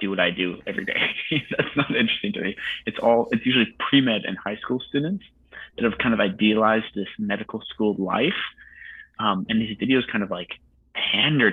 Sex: male